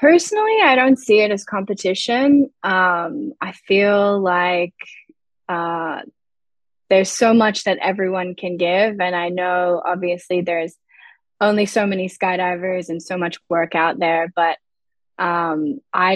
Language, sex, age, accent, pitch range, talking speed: English, female, 20-39, American, 175-205 Hz, 135 wpm